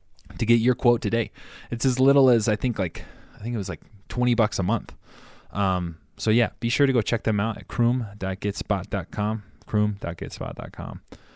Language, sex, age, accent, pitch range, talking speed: English, male, 20-39, American, 90-110 Hz, 180 wpm